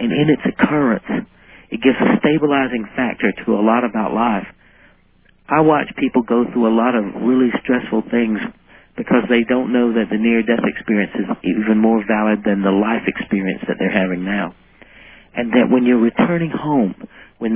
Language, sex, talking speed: English, male, 180 wpm